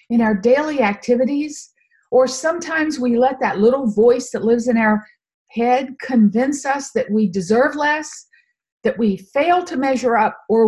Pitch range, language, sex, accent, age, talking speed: 210-295 Hz, English, female, American, 50-69, 165 wpm